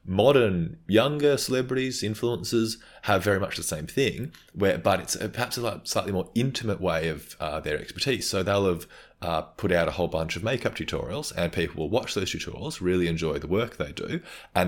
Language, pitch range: English, 80-110 Hz